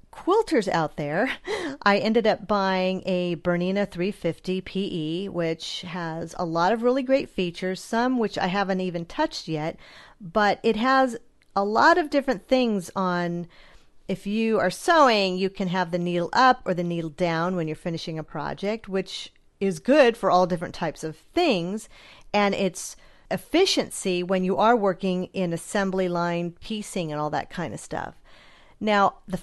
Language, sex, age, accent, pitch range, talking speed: English, female, 40-59, American, 175-220 Hz, 165 wpm